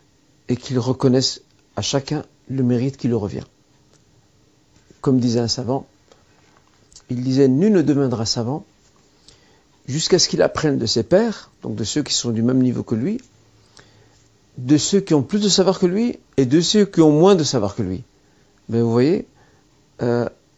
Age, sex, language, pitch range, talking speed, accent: 50-69, male, French, 120-150 Hz, 185 wpm, French